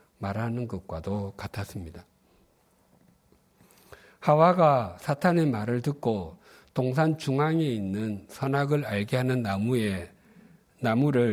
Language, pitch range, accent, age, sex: Korean, 105-155 Hz, native, 50-69, male